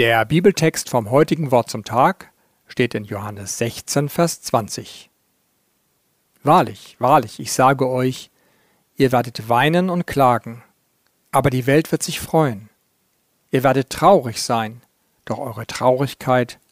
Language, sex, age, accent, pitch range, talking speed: German, male, 50-69, German, 120-145 Hz, 130 wpm